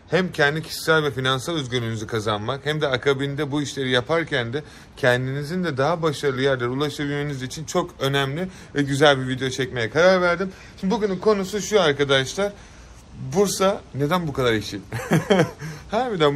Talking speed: 150 wpm